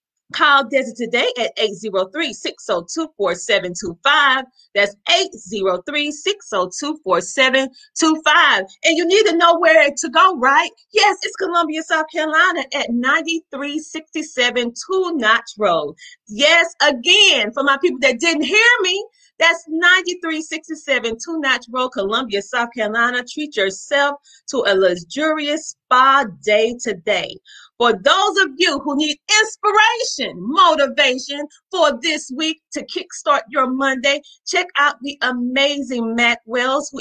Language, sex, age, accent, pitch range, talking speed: English, female, 30-49, American, 235-325 Hz, 120 wpm